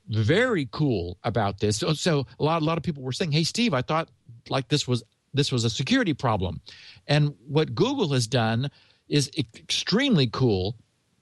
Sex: male